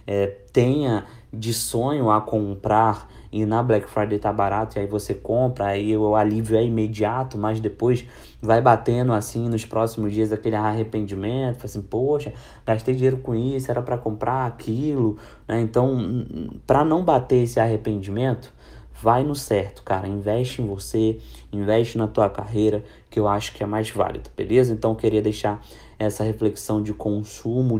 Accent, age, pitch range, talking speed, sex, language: Brazilian, 20-39, 105-125 Hz, 160 wpm, male, Portuguese